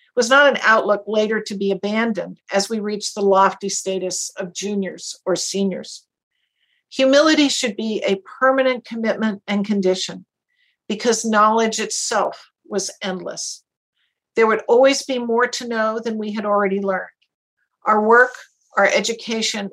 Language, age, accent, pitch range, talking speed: English, 50-69, American, 195-245 Hz, 145 wpm